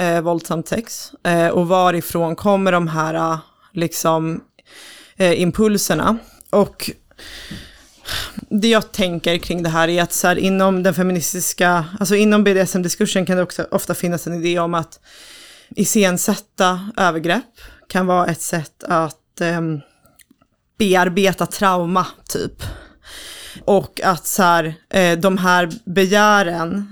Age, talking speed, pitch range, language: 20-39, 130 wpm, 170-200 Hz, Swedish